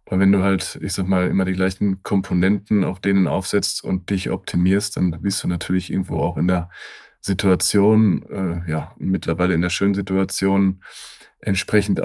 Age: 30-49